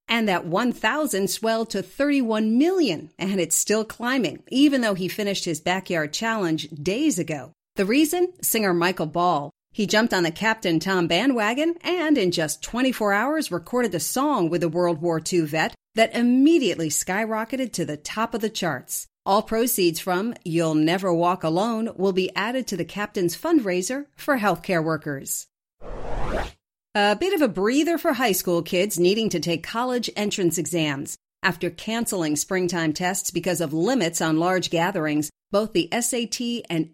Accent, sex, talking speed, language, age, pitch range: American, female, 165 wpm, English, 40-59, 170-240 Hz